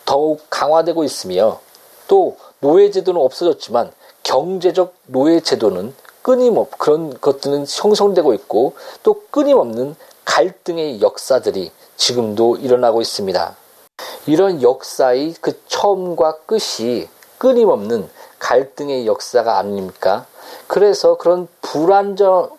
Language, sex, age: Korean, male, 40-59